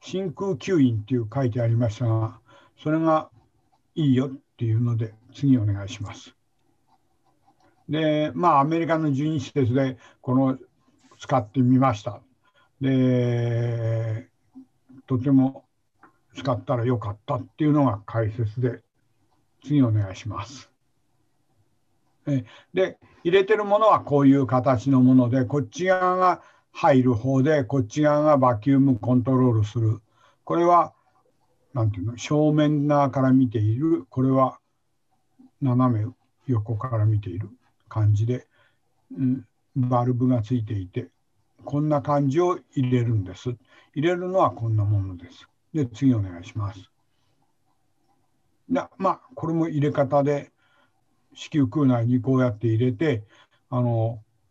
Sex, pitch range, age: male, 115-145 Hz, 60-79